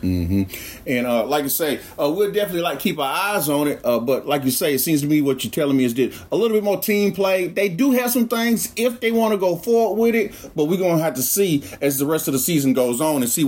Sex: male